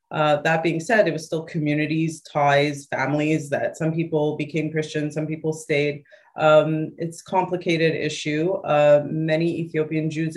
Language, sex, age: English, female, 30-49